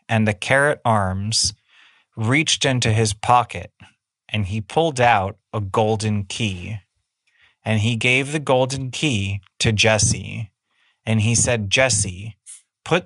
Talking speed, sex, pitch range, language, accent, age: 130 wpm, male, 100-120 Hz, English, American, 30-49